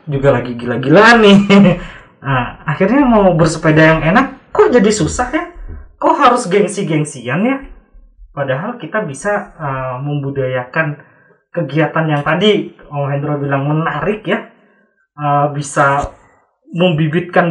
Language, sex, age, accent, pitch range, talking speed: Indonesian, male, 20-39, native, 135-205 Hz, 115 wpm